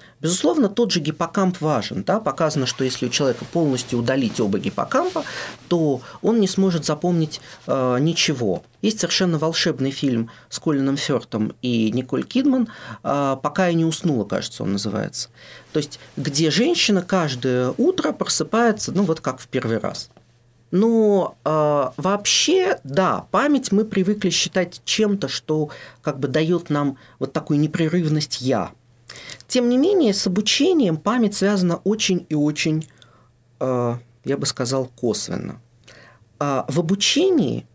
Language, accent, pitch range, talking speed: Russian, native, 130-185 Hz, 140 wpm